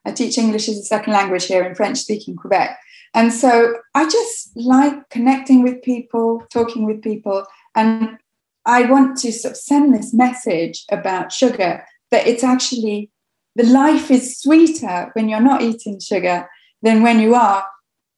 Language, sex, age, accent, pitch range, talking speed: English, female, 30-49, British, 200-270 Hz, 155 wpm